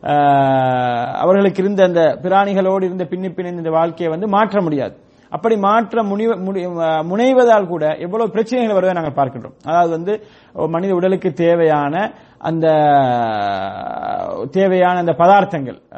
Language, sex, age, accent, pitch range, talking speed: English, male, 30-49, Indian, 155-200 Hz, 100 wpm